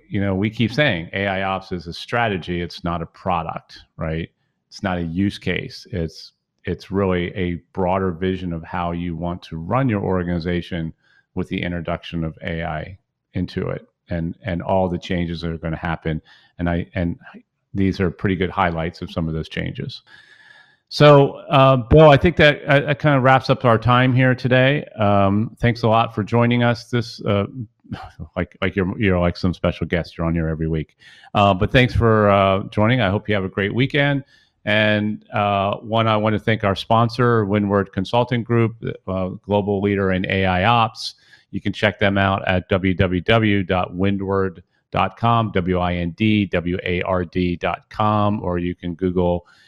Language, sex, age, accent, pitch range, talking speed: English, male, 40-59, American, 90-110 Hz, 175 wpm